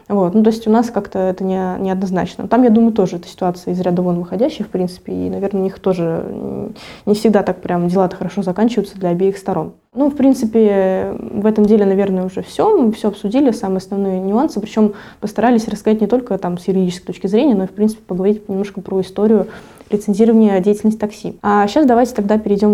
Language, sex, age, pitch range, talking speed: Russian, female, 20-39, 190-225 Hz, 205 wpm